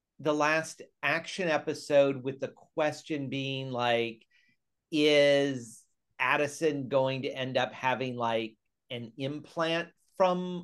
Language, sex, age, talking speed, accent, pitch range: English, male, 40-59, 115 wpm, American, 120-160 Hz